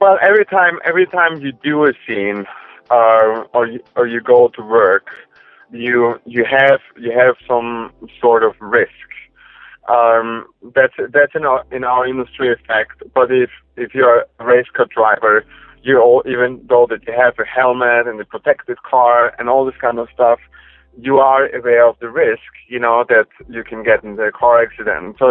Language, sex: English, male